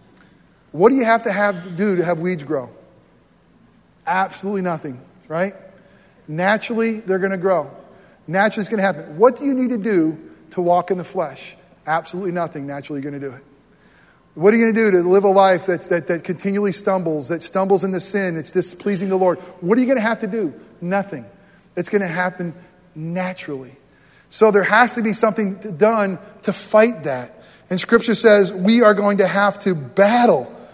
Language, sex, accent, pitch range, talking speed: English, male, American, 180-225 Hz, 200 wpm